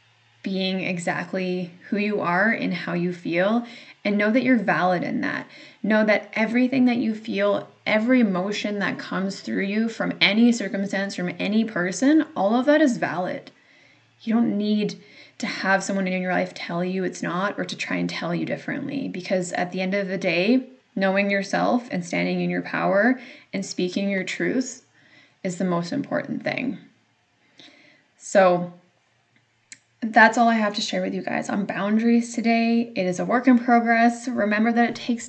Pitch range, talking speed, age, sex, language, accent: 185-230 Hz, 180 wpm, 10-29, female, English, American